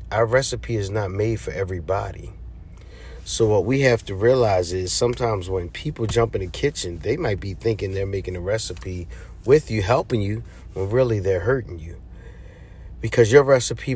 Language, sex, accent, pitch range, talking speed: English, male, American, 90-120 Hz, 175 wpm